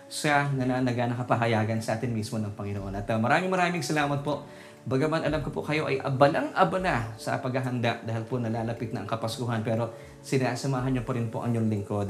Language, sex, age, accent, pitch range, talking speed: Filipino, male, 20-39, native, 115-140 Hz, 195 wpm